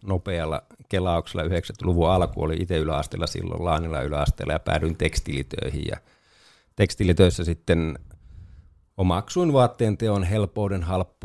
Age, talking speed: 50-69, 100 wpm